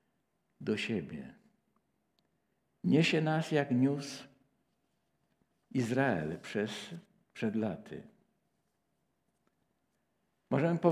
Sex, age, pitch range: male, 60-79, 125-165 Hz